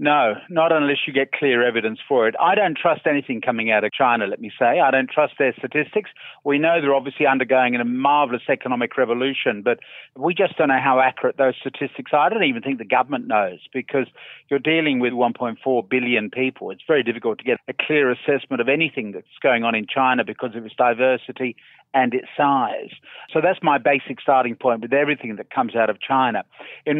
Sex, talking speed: male, 210 wpm